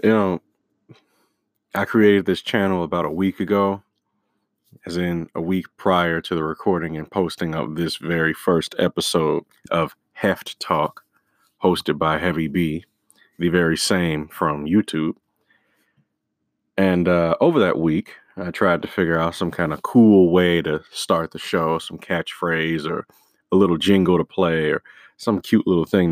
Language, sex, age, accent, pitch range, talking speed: English, male, 30-49, American, 80-95 Hz, 160 wpm